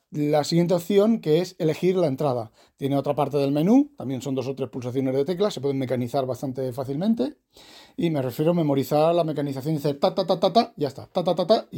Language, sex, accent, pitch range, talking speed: Spanish, male, Spanish, 135-185 Hz, 240 wpm